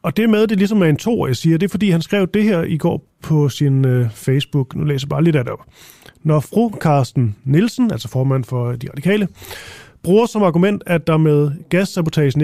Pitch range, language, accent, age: 145-180 Hz, Danish, native, 30-49